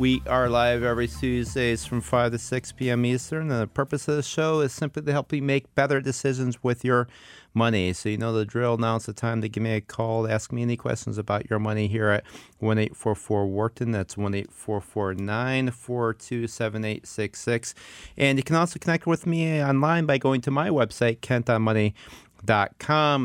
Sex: male